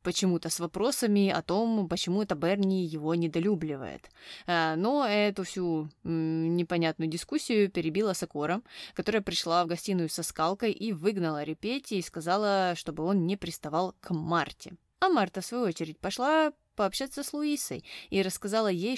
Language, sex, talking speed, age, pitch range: Russian, female, 145 wpm, 20-39, 170-220 Hz